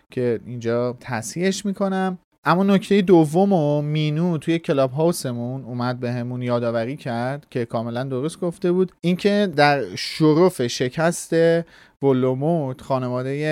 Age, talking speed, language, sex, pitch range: 30-49, 125 wpm, Persian, male, 125-165 Hz